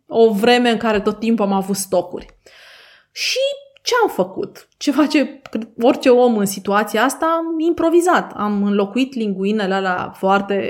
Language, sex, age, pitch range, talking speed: Romanian, female, 20-39, 210-280 Hz, 150 wpm